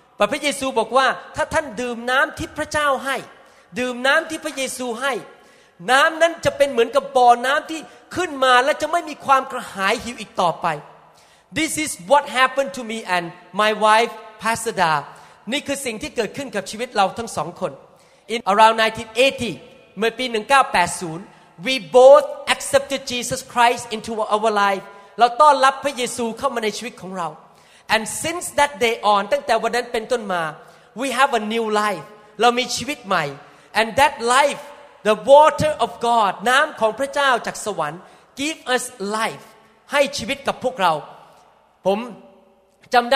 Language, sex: Thai, male